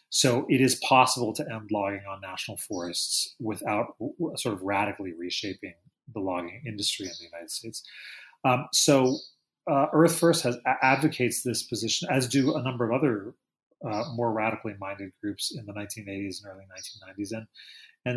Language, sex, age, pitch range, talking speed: English, male, 30-49, 105-130 Hz, 165 wpm